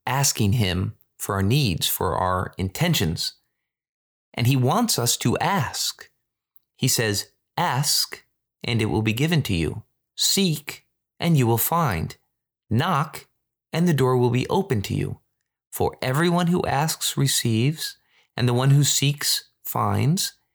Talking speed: 145 wpm